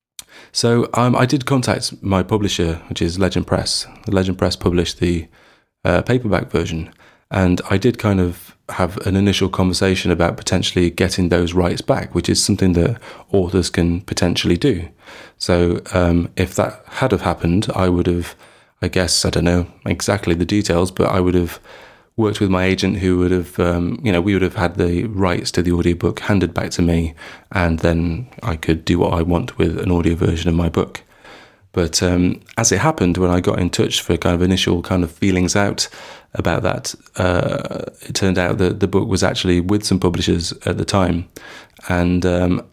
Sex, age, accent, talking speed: male, 30-49, British, 190 wpm